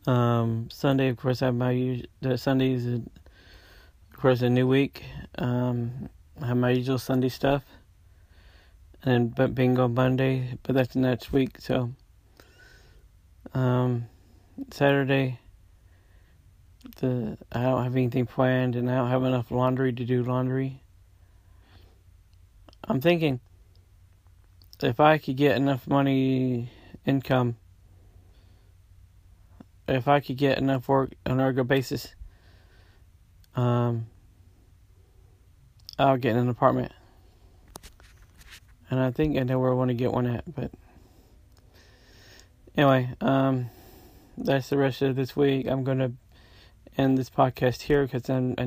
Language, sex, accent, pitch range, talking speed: English, male, American, 95-130 Hz, 125 wpm